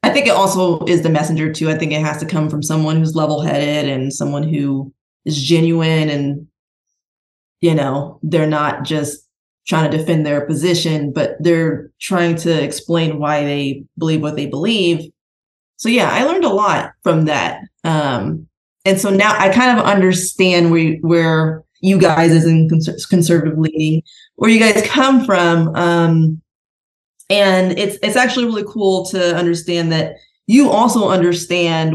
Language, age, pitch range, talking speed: English, 20-39, 155-180 Hz, 165 wpm